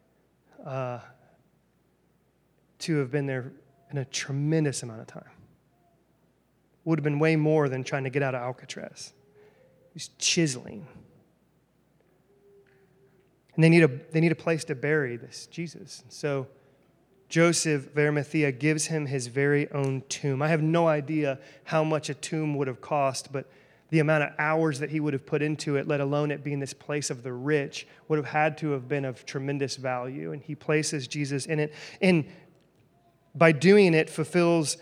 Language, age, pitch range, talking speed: English, 30-49, 140-160 Hz, 170 wpm